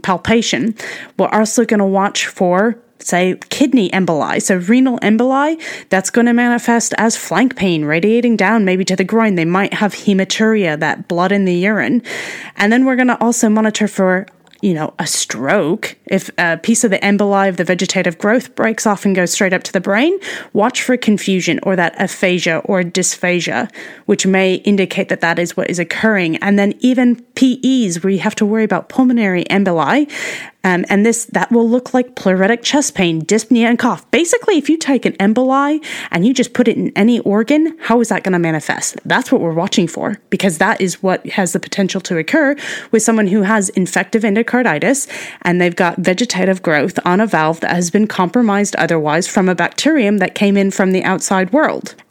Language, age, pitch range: English, 20-39, 185-235 Hz